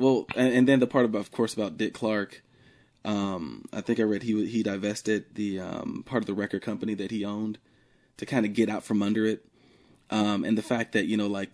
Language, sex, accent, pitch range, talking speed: English, male, American, 100-110 Hz, 240 wpm